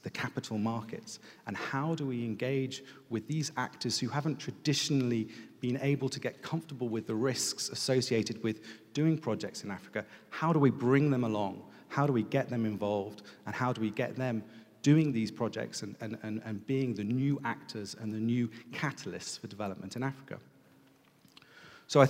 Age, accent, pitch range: 40-59, British, 110-135 Hz